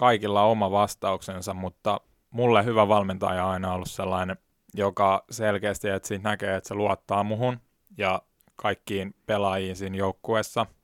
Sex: male